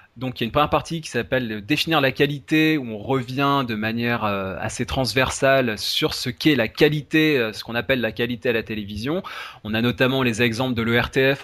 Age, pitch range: 20-39, 110-140 Hz